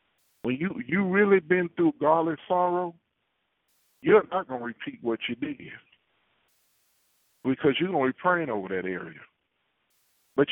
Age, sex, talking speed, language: 50-69, male, 150 wpm, English